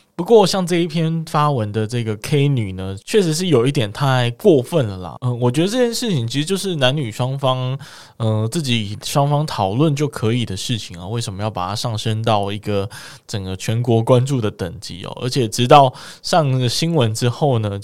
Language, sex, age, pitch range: Chinese, male, 20-39, 110-155 Hz